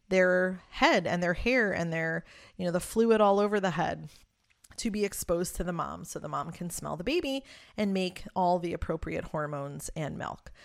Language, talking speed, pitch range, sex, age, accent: English, 205 wpm, 165-190 Hz, female, 30-49, American